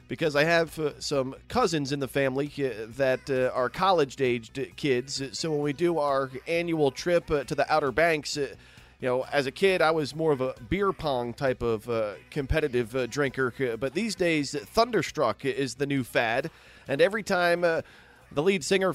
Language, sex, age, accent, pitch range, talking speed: English, male, 30-49, American, 130-165 Hz, 195 wpm